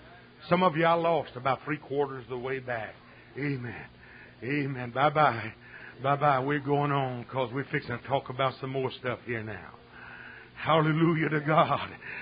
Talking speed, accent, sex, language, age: 155 wpm, American, male, English, 50-69